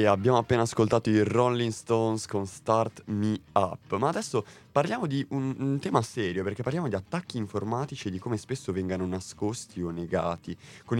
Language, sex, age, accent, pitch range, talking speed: Italian, male, 20-39, native, 100-125 Hz, 180 wpm